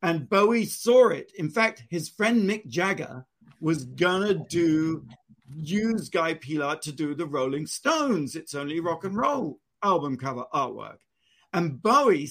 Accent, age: British, 50-69